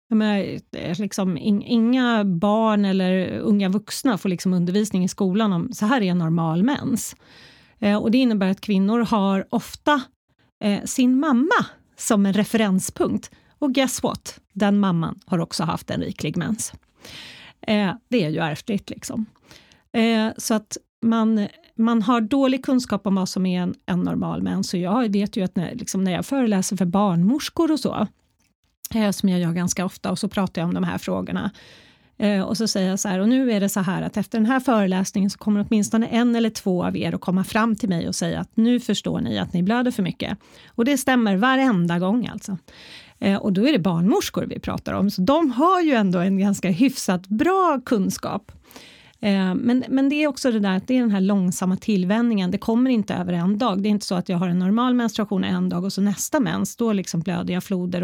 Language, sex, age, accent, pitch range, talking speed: Swedish, female, 30-49, native, 185-235 Hz, 205 wpm